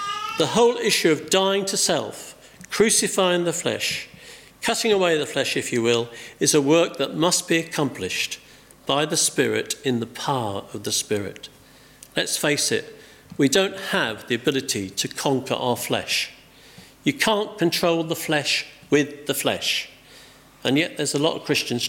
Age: 50-69